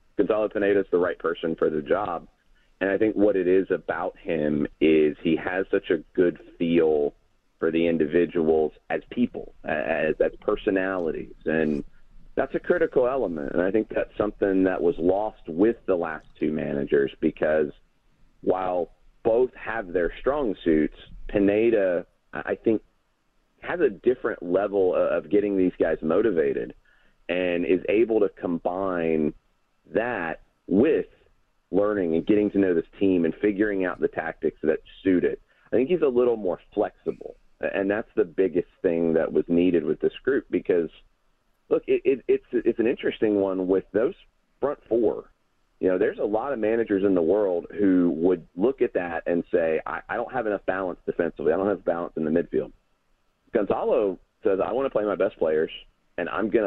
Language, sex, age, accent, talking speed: English, male, 40-59, American, 170 wpm